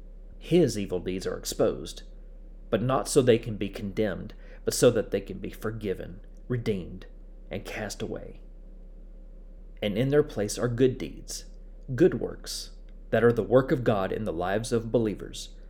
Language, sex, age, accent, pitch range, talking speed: English, male, 30-49, American, 105-130 Hz, 165 wpm